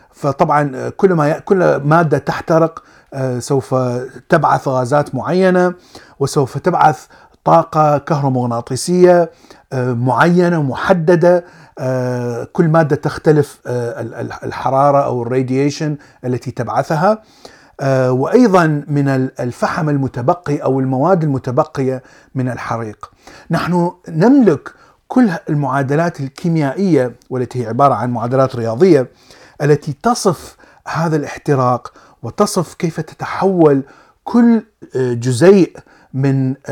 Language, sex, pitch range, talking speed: Arabic, male, 130-170 Hz, 85 wpm